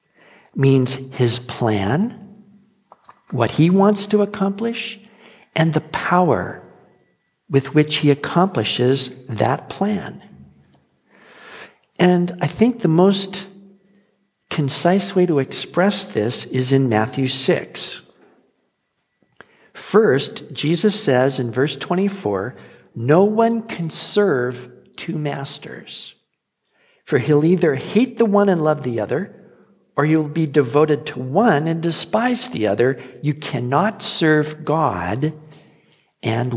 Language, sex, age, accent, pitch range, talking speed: English, male, 50-69, American, 140-200 Hz, 110 wpm